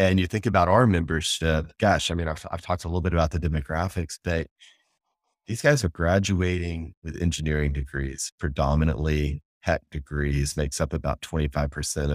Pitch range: 75-95 Hz